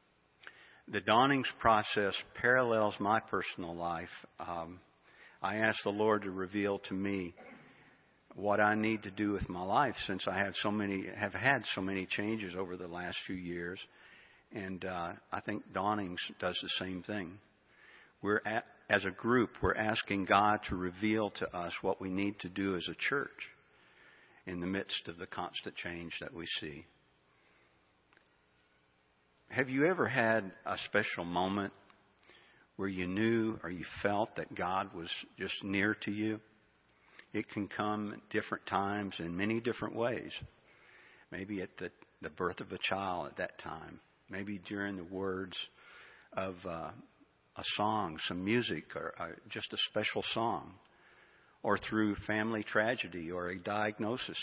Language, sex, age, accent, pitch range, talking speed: English, male, 50-69, American, 90-105 Hz, 155 wpm